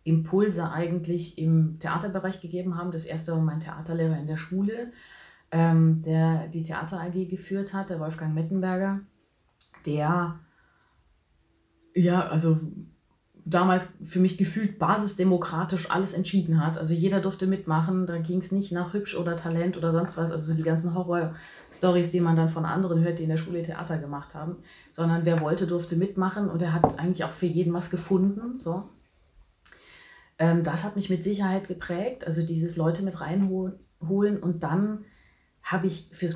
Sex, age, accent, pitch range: female, 20-39, German, 160-185 Hz